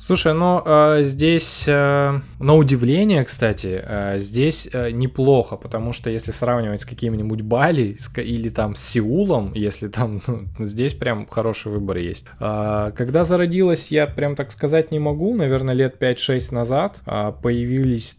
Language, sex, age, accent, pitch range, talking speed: Russian, male, 20-39, native, 105-135 Hz, 130 wpm